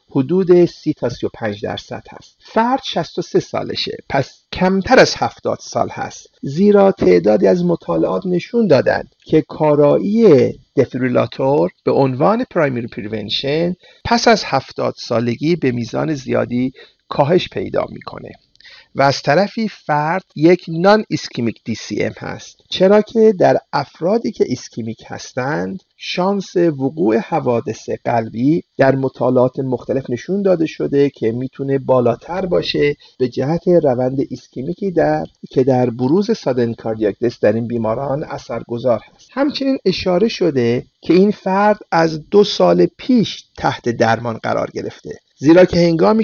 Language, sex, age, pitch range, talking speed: Persian, male, 50-69, 125-185 Hz, 135 wpm